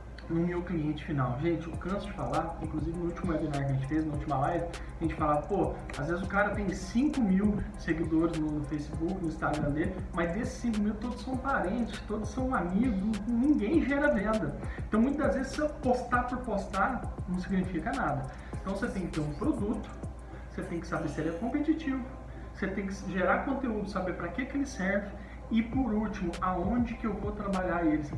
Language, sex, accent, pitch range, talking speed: Portuguese, male, Brazilian, 170-235 Hz, 200 wpm